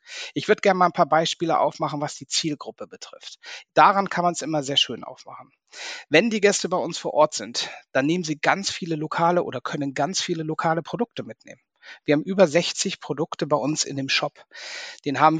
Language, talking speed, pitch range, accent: German, 205 wpm, 135-175 Hz, German